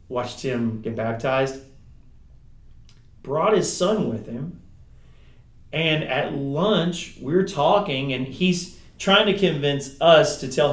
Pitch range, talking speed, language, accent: 115-150 Hz, 130 wpm, English, American